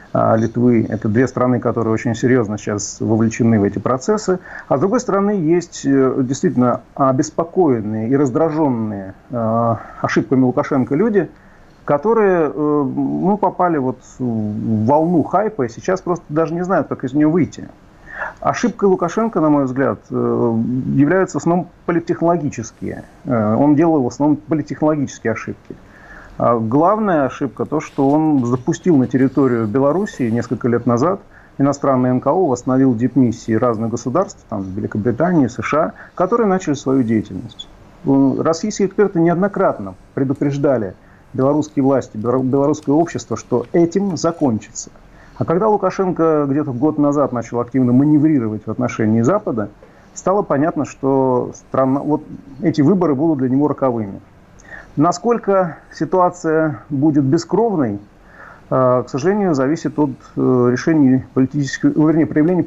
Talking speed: 120 wpm